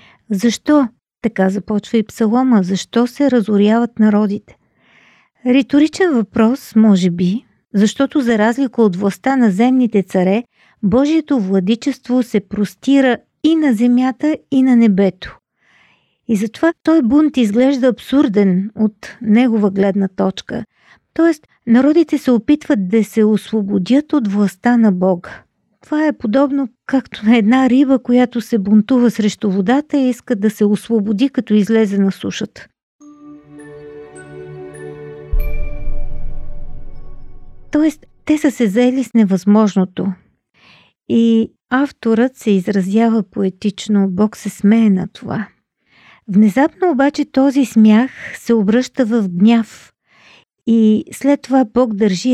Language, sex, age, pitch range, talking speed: Bulgarian, female, 50-69, 205-260 Hz, 120 wpm